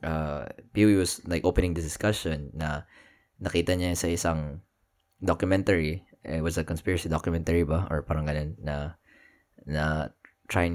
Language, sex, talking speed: Filipino, male, 140 wpm